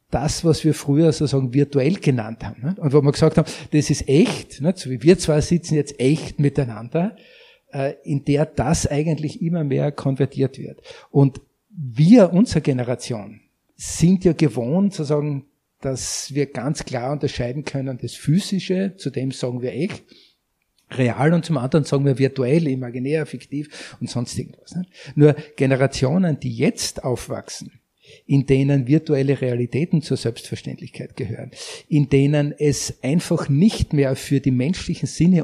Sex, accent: male, Austrian